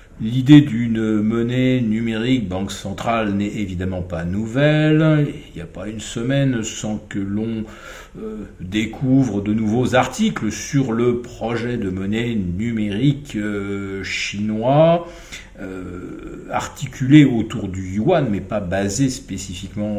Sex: male